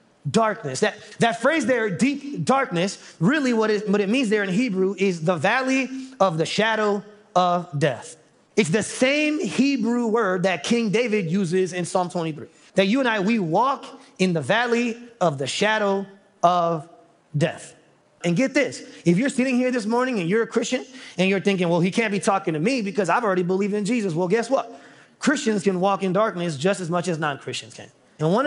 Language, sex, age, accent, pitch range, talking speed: English, male, 30-49, American, 175-230 Hz, 200 wpm